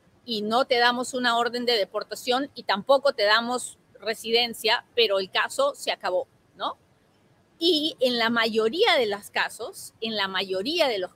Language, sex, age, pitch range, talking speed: Spanish, female, 30-49, 220-275 Hz, 165 wpm